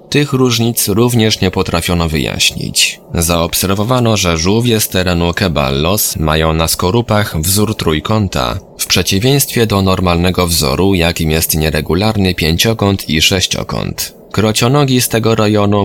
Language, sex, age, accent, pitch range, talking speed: Polish, male, 20-39, native, 90-115 Hz, 120 wpm